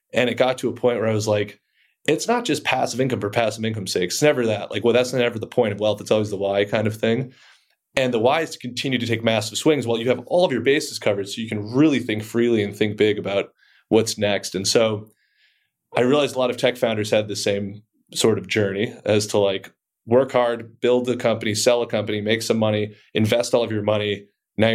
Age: 30-49